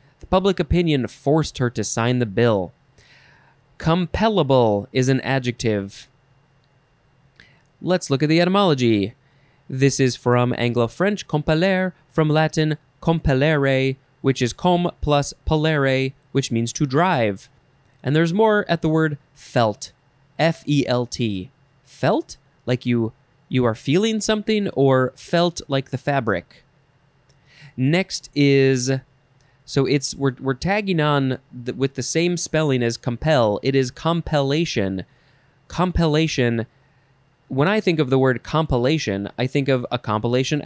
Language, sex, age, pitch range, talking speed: English, male, 20-39, 125-155 Hz, 125 wpm